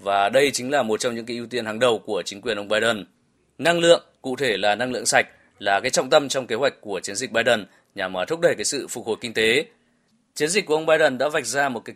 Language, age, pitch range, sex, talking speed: Vietnamese, 20-39, 110-155 Hz, male, 275 wpm